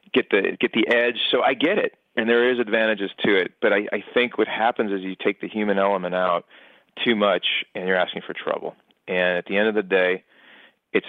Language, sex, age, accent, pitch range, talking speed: English, male, 40-59, American, 95-115 Hz, 235 wpm